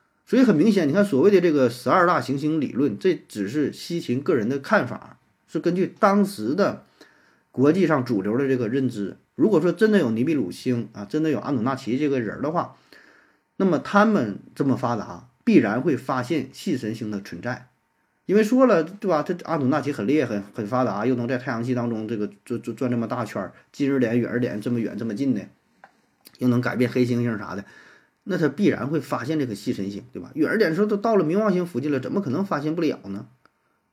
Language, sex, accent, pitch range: Chinese, male, native, 120-175 Hz